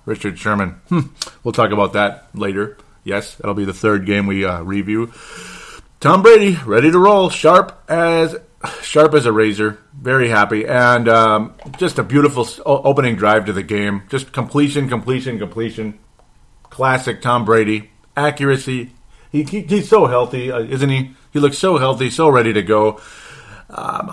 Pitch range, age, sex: 105-130 Hz, 40-59, male